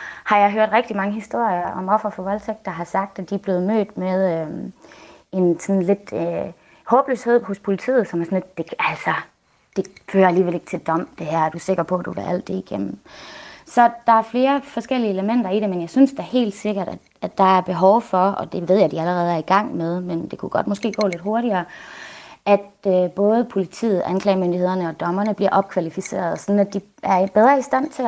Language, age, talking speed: Danish, 20-39, 230 wpm